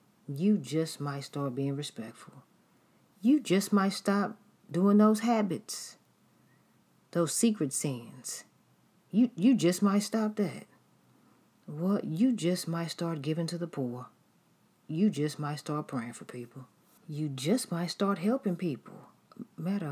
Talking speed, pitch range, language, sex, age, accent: 140 wpm, 150-205 Hz, English, female, 40-59, American